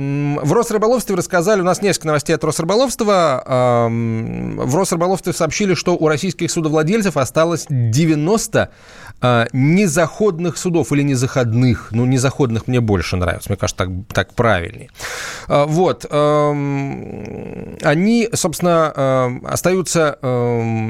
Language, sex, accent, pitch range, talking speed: Russian, male, native, 125-175 Hz, 105 wpm